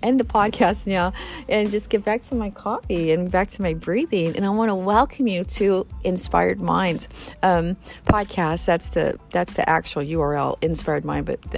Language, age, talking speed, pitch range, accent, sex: English, 40-59, 185 wpm, 165-225 Hz, American, female